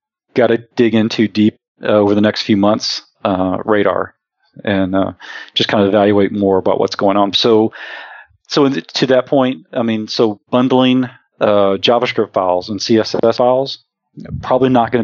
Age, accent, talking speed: 40-59, American, 175 wpm